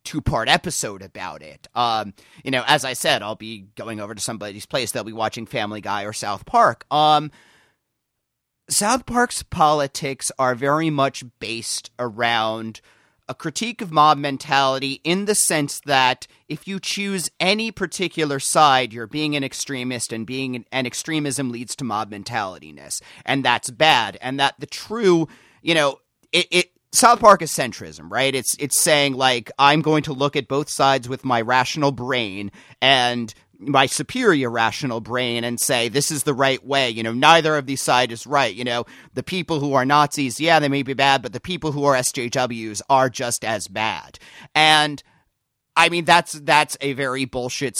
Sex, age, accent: male, 30-49, American